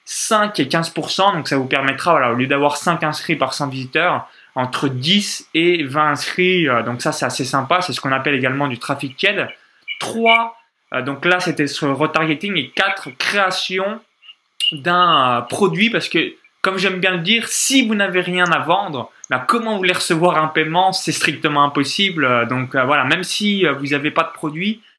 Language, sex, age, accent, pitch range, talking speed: French, male, 20-39, French, 145-190 Hz, 200 wpm